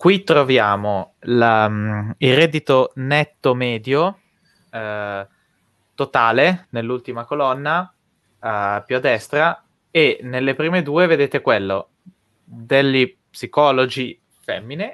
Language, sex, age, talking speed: Italian, male, 20-39, 90 wpm